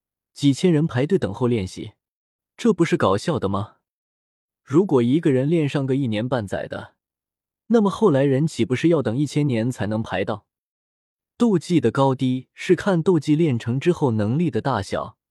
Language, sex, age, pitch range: Chinese, male, 20-39, 110-155 Hz